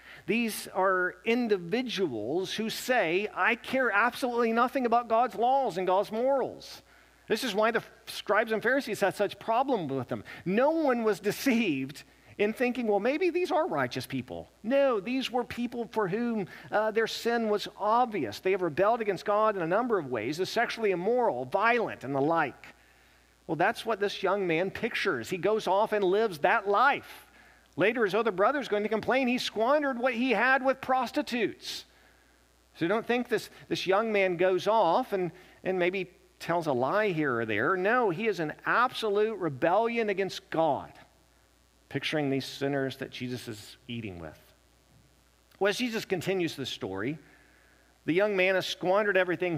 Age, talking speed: 50-69, 170 wpm